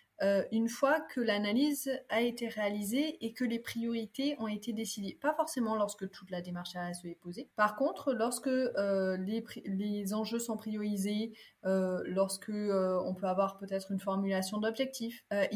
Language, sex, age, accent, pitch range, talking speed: French, female, 20-39, French, 190-230 Hz, 170 wpm